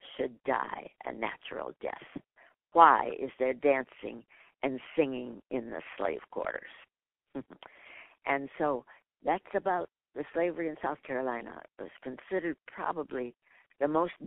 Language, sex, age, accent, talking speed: English, female, 60-79, American, 125 wpm